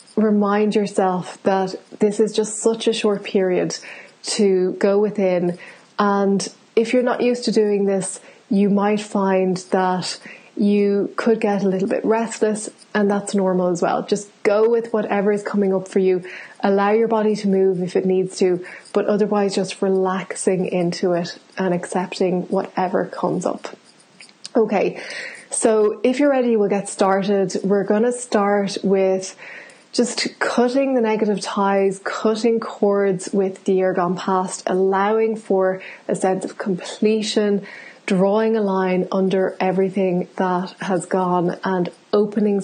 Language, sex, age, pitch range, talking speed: English, female, 20-39, 190-215 Hz, 150 wpm